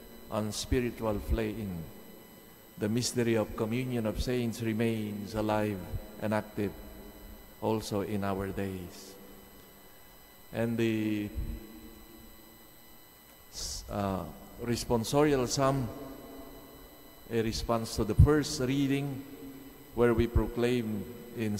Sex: male